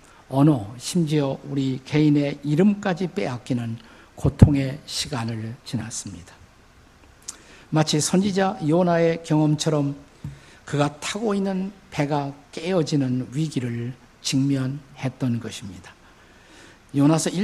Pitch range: 120-165 Hz